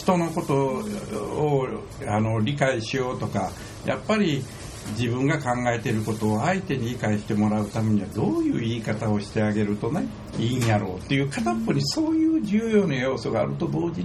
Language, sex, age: Japanese, male, 60-79